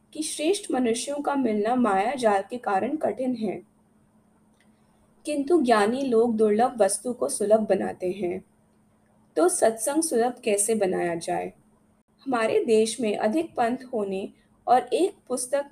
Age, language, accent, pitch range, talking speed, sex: 20-39, Hindi, native, 210-260 Hz, 135 wpm, female